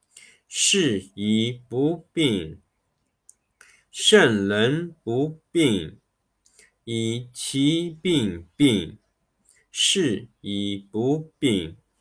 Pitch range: 115-165 Hz